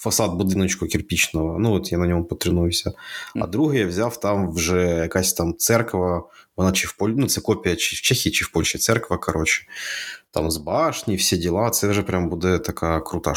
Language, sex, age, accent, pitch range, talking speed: Ukrainian, male, 30-49, native, 85-105 Hz, 200 wpm